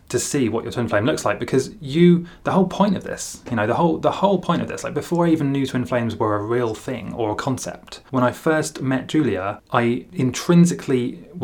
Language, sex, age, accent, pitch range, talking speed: English, male, 20-39, British, 110-140 Hz, 225 wpm